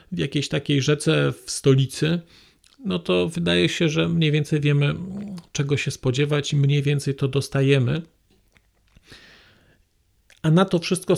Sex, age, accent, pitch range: male, 40-59, native, 110-155 Hz